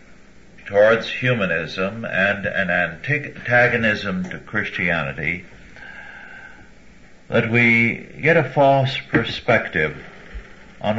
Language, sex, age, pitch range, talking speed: English, male, 60-79, 90-115 Hz, 75 wpm